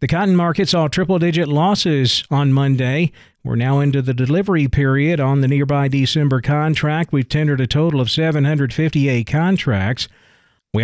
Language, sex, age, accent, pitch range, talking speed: English, male, 50-69, American, 130-160 Hz, 150 wpm